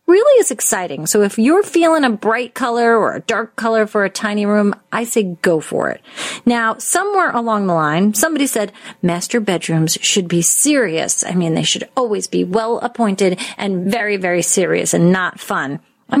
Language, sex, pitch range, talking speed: English, female, 200-265 Hz, 190 wpm